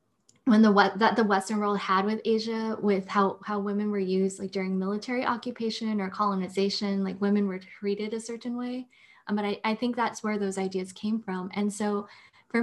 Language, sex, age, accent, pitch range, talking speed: English, female, 10-29, American, 190-220 Hz, 205 wpm